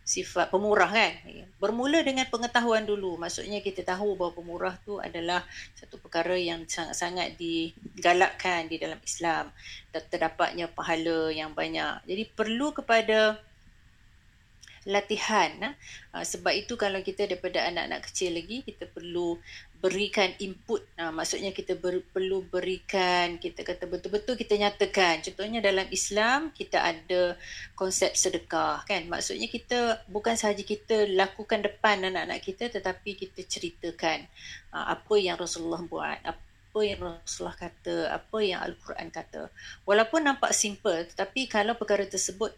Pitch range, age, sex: 170-205 Hz, 30-49, female